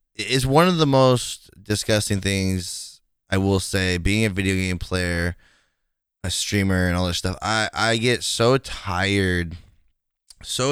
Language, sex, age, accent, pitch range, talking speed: English, male, 10-29, American, 95-130 Hz, 150 wpm